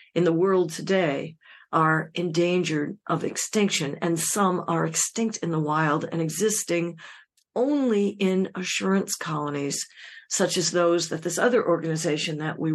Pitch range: 165-205 Hz